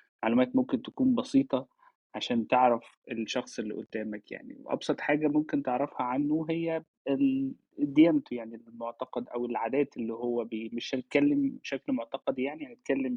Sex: male